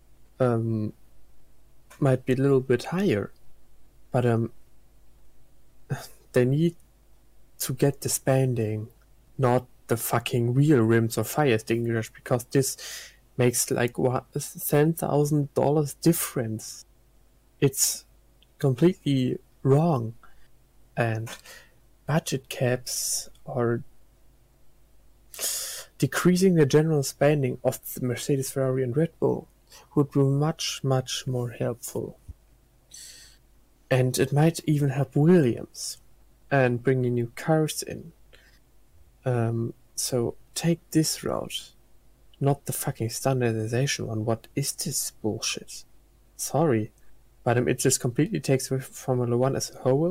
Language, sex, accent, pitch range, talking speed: English, male, German, 120-145 Hz, 110 wpm